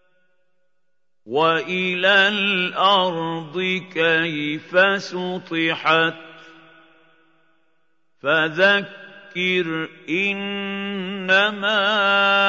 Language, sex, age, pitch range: Arabic, male, 50-69, 165-190 Hz